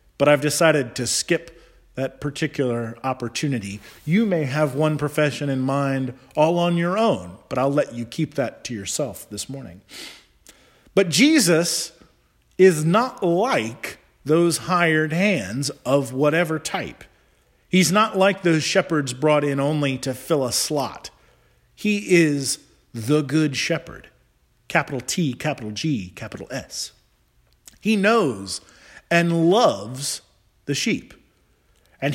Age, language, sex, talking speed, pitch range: 40-59, English, male, 130 wpm, 125-170 Hz